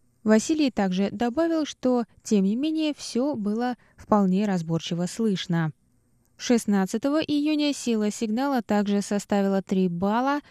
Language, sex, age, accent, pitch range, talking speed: Russian, female, 20-39, native, 185-250 Hz, 115 wpm